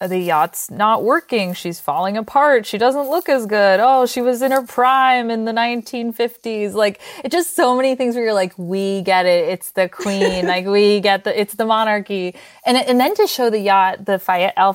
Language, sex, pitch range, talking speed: English, female, 175-215 Hz, 210 wpm